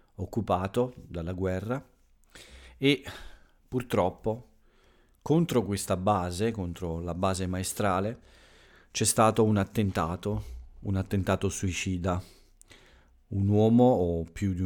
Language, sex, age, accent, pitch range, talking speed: Italian, male, 40-59, native, 90-105 Hz, 100 wpm